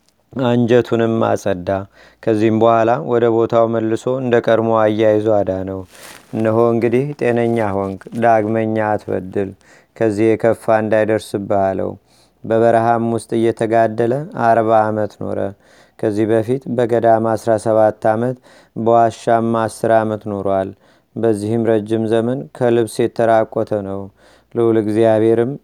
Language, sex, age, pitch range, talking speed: Amharic, male, 30-49, 110-115 Hz, 100 wpm